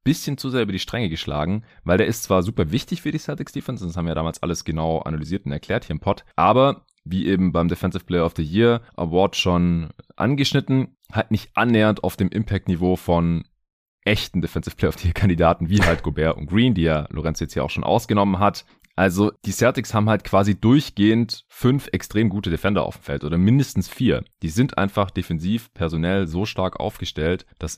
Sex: male